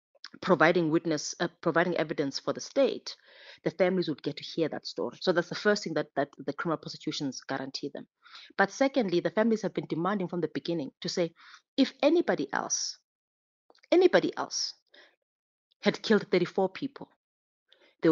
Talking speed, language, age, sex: 165 wpm, English, 30-49, female